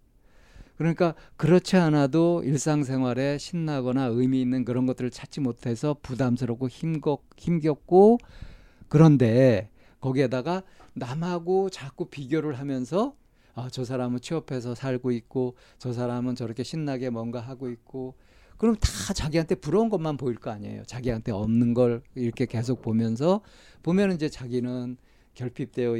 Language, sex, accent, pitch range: Korean, male, native, 120-160 Hz